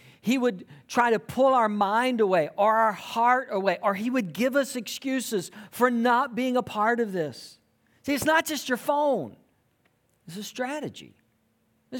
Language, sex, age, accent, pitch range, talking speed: English, male, 50-69, American, 175-255 Hz, 175 wpm